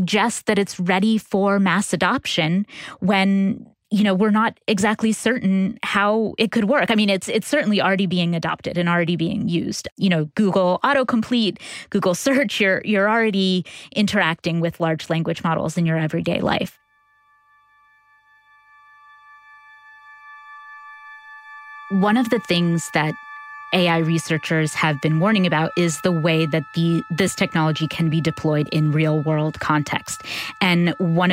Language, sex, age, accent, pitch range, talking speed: English, female, 20-39, American, 165-215 Hz, 145 wpm